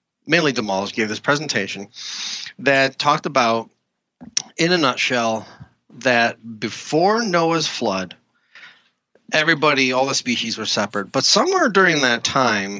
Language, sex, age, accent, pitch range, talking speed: English, male, 30-49, American, 115-175 Hz, 120 wpm